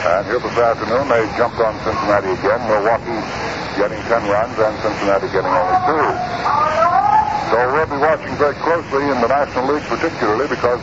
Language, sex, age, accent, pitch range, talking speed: English, female, 60-79, American, 110-145 Hz, 165 wpm